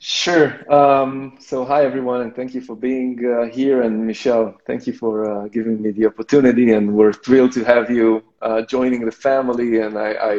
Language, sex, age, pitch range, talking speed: English, male, 20-39, 110-125 Hz, 195 wpm